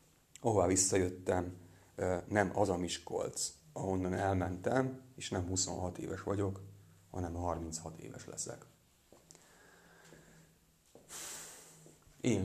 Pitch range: 95-105 Hz